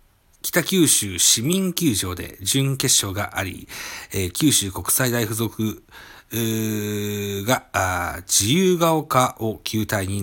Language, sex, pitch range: Japanese, male, 95-120 Hz